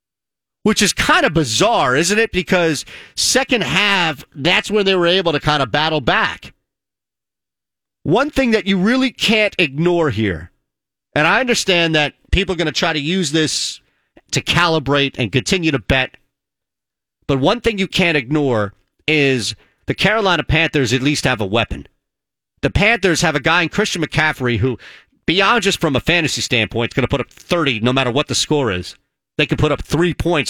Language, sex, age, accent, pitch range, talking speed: English, male, 40-59, American, 135-180 Hz, 185 wpm